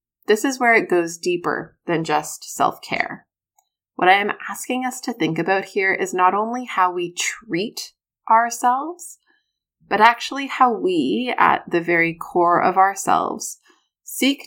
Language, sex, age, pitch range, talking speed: English, female, 20-39, 170-260 Hz, 155 wpm